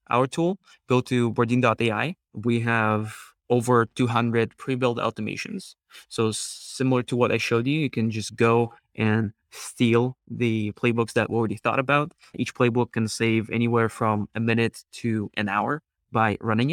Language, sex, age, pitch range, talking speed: English, male, 20-39, 115-130 Hz, 160 wpm